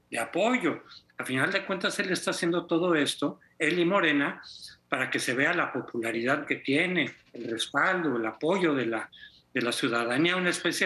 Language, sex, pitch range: Spanish, male, 140-190 Hz